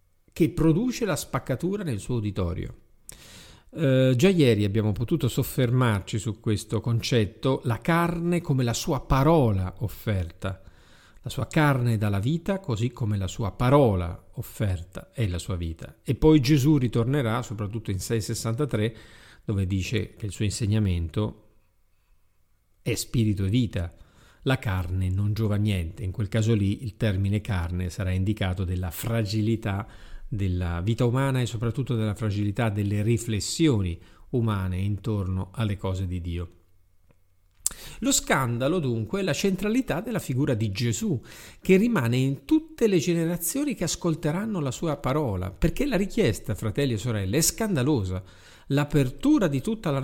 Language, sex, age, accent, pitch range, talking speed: Italian, male, 50-69, native, 100-145 Hz, 145 wpm